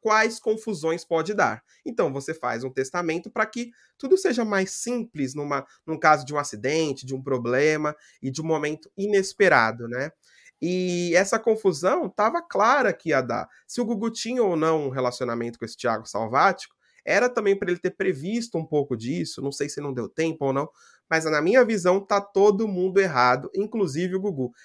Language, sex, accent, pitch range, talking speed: Portuguese, male, Brazilian, 140-200 Hz, 190 wpm